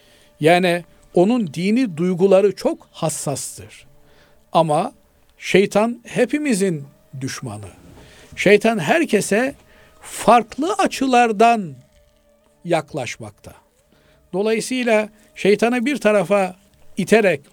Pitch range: 150-215 Hz